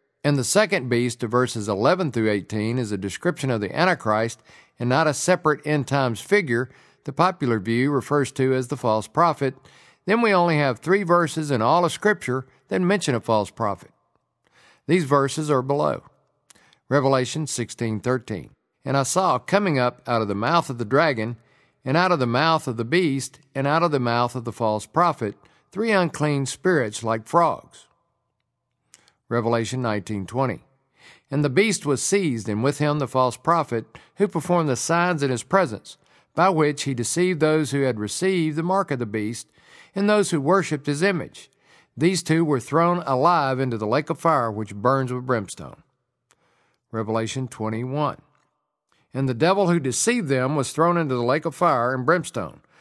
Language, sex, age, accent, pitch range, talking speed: English, male, 50-69, American, 120-165 Hz, 180 wpm